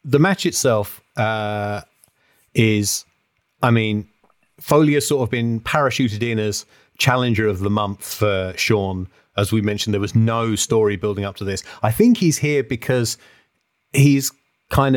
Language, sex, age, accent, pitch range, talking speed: English, male, 30-49, British, 105-130 Hz, 155 wpm